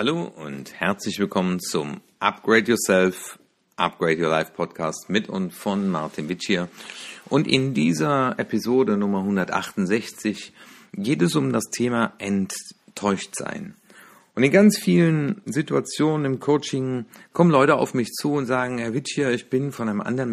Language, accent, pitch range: German, German, 110-145 Hz